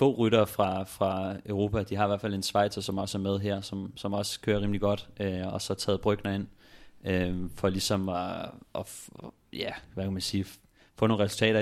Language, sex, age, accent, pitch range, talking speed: Danish, male, 30-49, native, 95-105 Hz, 205 wpm